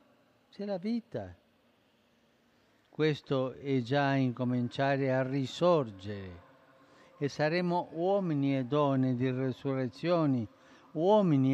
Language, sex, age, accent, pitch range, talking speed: Italian, male, 60-79, native, 125-150 Hz, 85 wpm